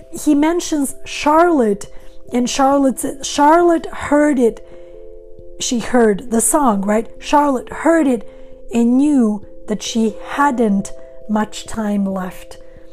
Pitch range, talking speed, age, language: 205-270 Hz, 110 wpm, 30-49, English